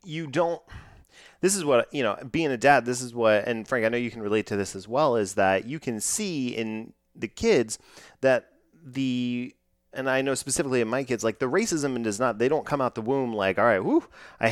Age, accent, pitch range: 30-49, American, 100-130 Hz